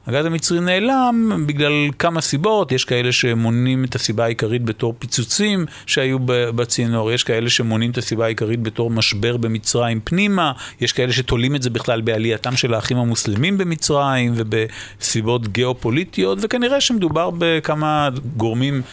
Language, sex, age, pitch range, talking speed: Hebrew, male, 50-69, 115-145 Hz, 135 wpm